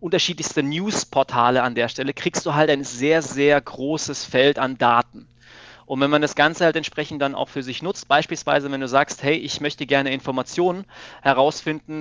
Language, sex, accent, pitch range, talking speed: German, male, German, 130-155 Hz, 185 wpm